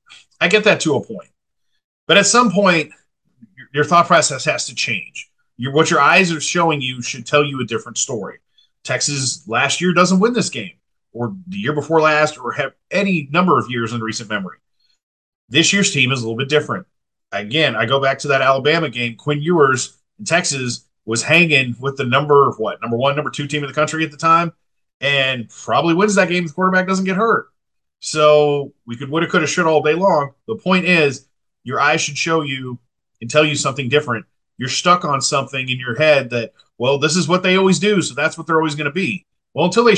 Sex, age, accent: male, 40-59, American